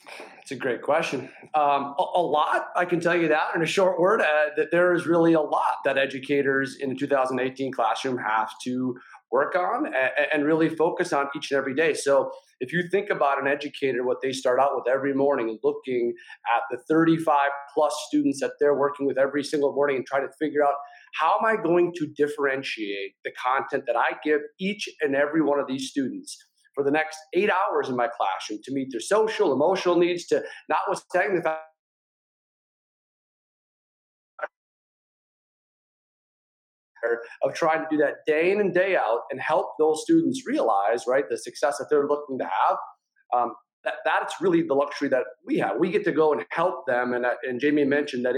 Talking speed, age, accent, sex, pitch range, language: 195 wpm, 40-59, American, male, 135-175 Hz, English